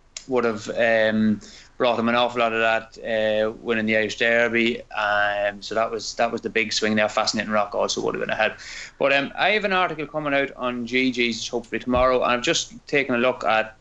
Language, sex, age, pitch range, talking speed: English, male, 20-39, 110-125 Hz, 220 wpm